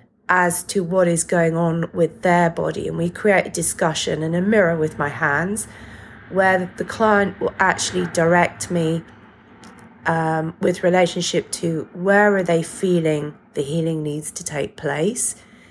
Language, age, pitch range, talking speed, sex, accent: English, 30-49, 160-195 Hz, 155 wpm, female, British